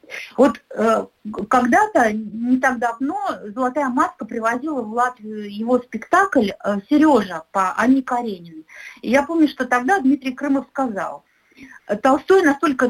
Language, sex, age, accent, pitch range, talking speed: Russian, female, 50-69, native, 225-290 Hz, 115 wpm